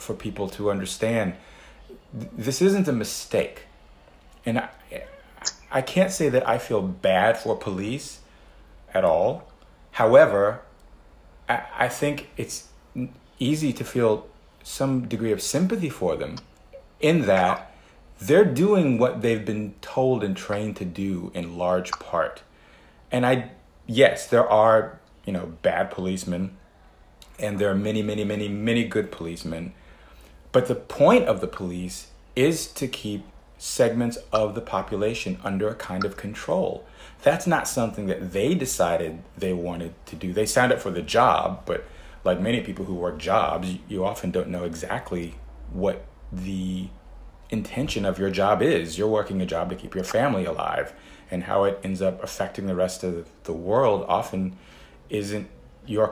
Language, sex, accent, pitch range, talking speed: English, male, American, 90-115 Hz, 155 wpm